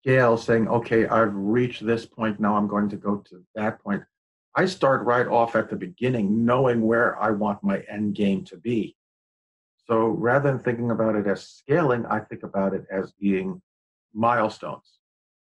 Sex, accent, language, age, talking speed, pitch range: male, American, English, 50-69, 180 wpm, 105-120 Hz